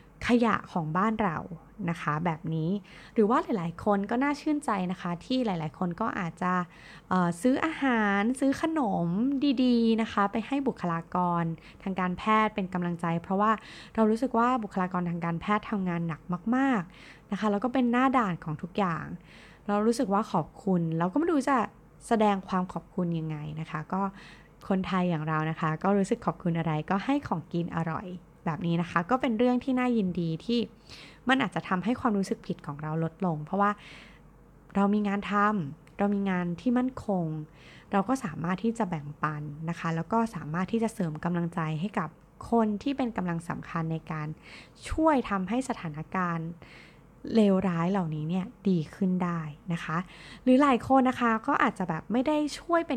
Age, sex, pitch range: 20-39, female, 170-225 Hz